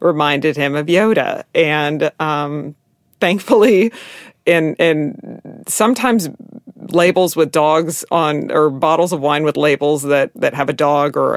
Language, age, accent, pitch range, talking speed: English, 40-59, American, 145-180 Hz, 130 wpm